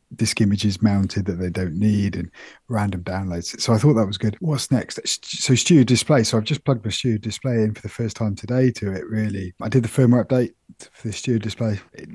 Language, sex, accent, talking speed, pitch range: English, male, British, 230 wpm, 100-120 Hz